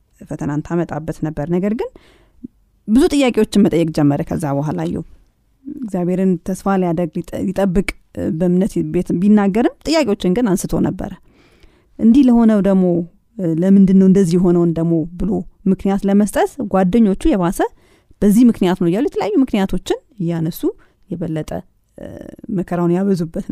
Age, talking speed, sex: 30-49, 105 wpm, female